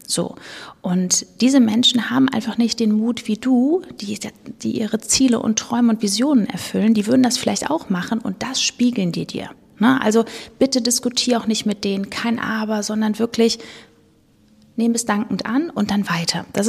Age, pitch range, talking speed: 30-49, 210-255 Hz, 185 wpm